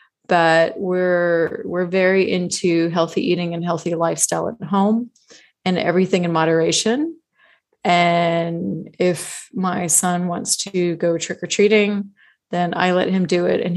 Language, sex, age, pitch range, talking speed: English, female, 30-49, 170-190 Hz, 145 wpm